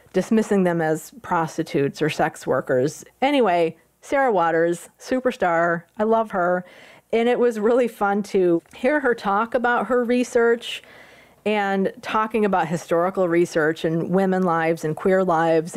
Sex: female